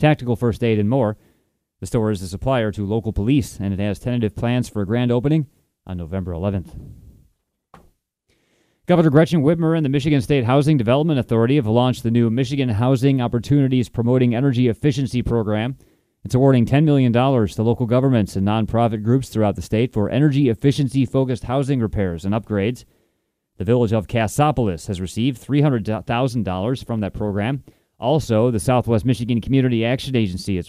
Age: 30-49